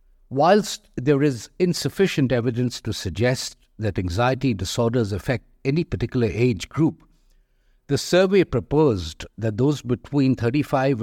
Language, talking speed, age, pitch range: English, 120 wpm, 60-79, 105-135 Hz